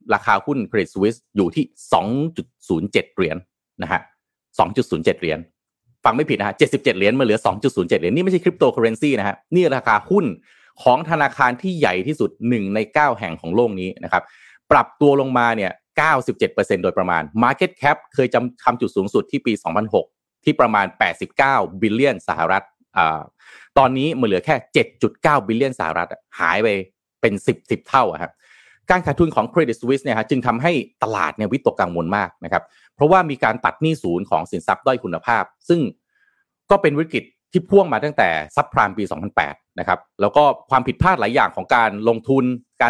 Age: 30-49